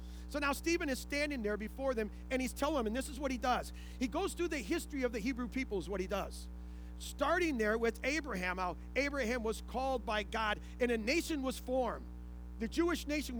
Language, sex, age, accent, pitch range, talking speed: English, male, 40-59, American, 195-285 Hz, 220 wpm